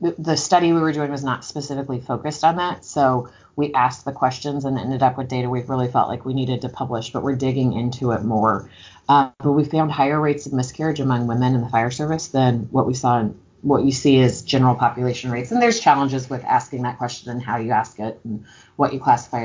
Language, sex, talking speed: English, female, 240 wpm